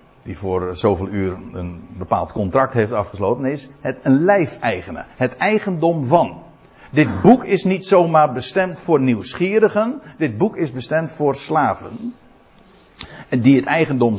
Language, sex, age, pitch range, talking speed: Dutch, male, 60-79, 115-180 Hz, 145 wpm